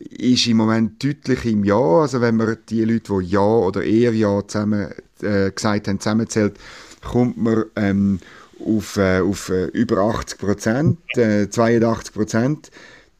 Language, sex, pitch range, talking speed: German, male, 105-125 Hz, 135 wpm